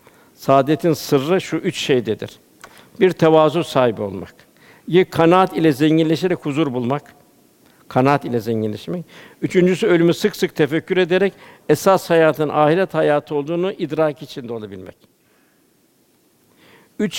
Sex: male